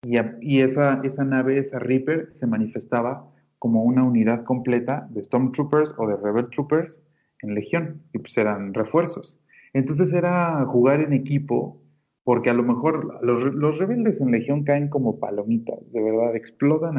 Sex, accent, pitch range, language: male, Mexican, 120-150 Hz, Spanish